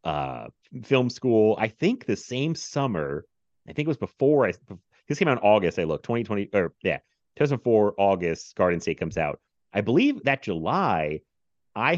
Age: 30-49